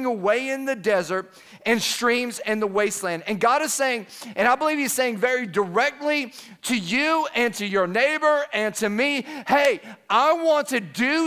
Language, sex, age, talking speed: English, male, 40-59, 180 wpm